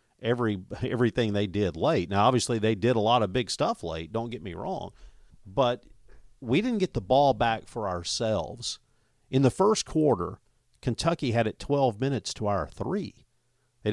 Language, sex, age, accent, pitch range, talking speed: English, male, 50-69, American, 100-130 Hz, 175 wpm